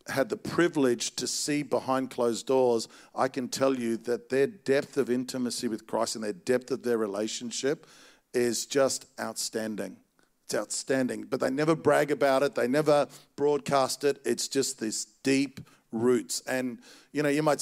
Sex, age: male, 50-69